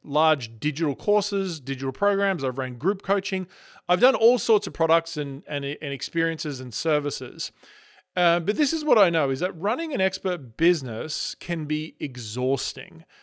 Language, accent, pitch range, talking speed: English, Australian, 145-195 Hz, 170 wpm